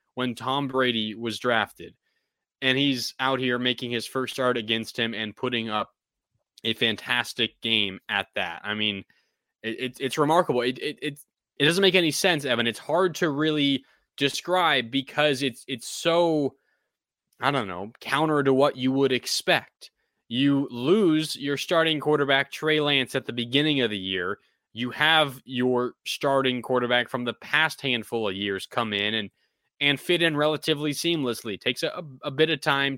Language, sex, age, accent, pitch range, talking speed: English, male, 20-39, American, 115-140 Hz, 170 wpm